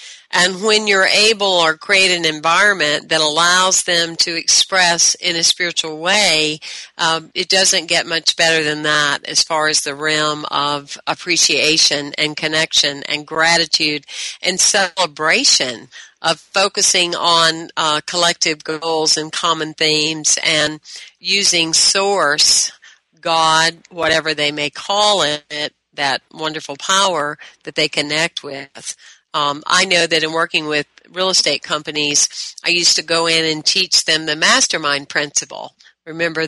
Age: 50-69